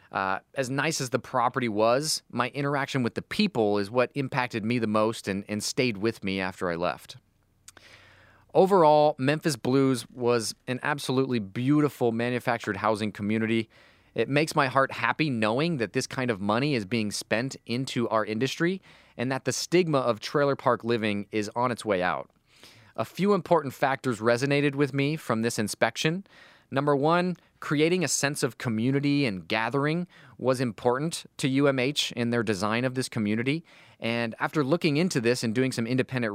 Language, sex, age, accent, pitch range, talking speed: English, male, 30-49, American, 115-145 Hz, 170 wpm